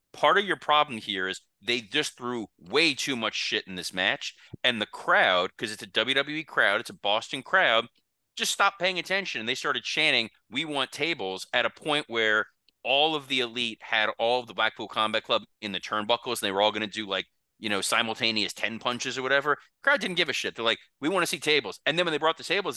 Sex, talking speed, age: male, 240 wpm, 30-49